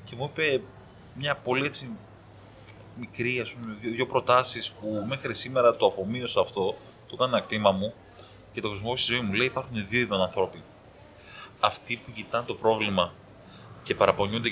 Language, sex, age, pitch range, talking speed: Greek, male, 20-39, 105-145 Hz, 160 wpm